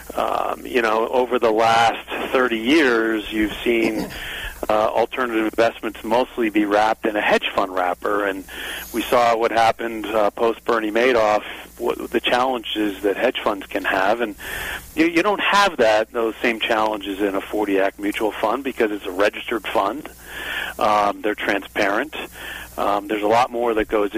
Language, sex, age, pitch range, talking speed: English, male, 40-59, 100-125 Hz, 160 wpm